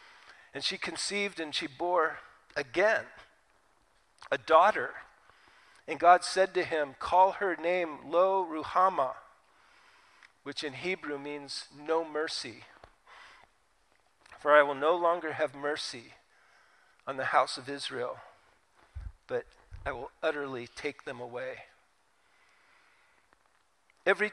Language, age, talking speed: English, 50-69, 110 wpm